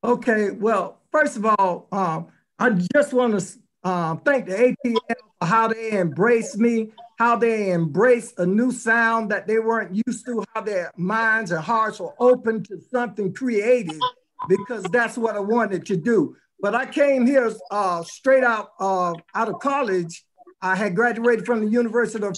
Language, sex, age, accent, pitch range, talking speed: English, male, 50-69, American, 205-245 Hz, 175 wpm